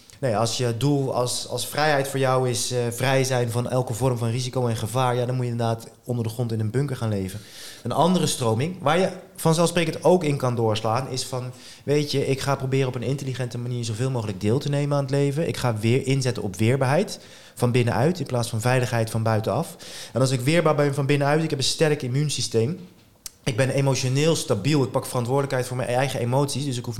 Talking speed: 225 wpm